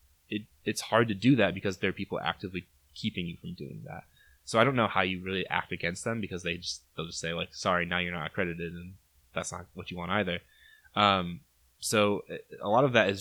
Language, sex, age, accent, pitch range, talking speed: English, male, 20-39, American, 85-100 Hz, 240 wpm